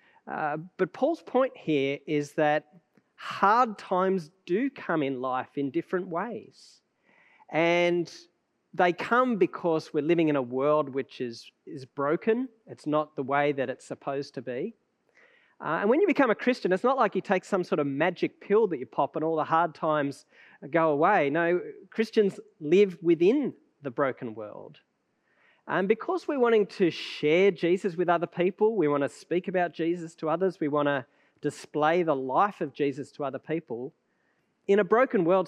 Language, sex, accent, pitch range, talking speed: English, male, Australian, 145-205 Hz, 180 wpm